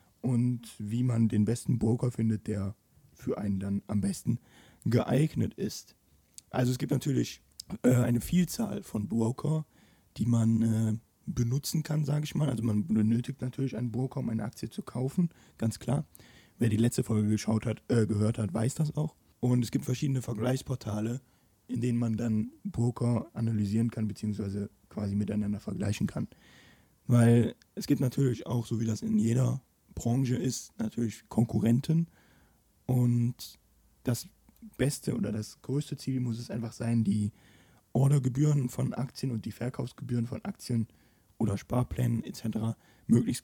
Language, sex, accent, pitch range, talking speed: German, male, German, 110-130 Hz, 155 wpm